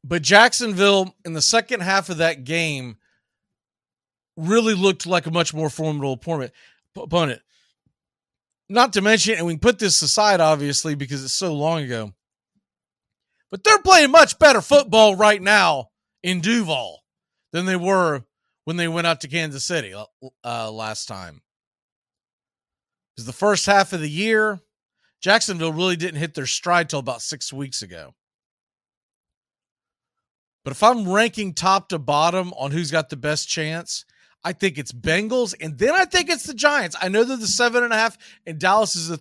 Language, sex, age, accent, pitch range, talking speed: English, male, 40-59, American, 155-210 Hz, 165 wpm